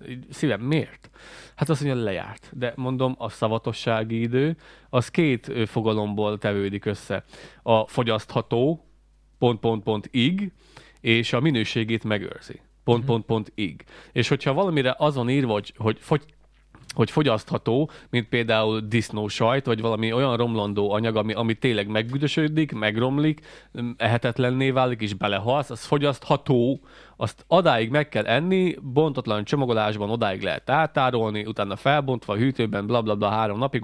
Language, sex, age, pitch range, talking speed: Hungarian, male, 30-49, 115-150 Hz, 125 wpm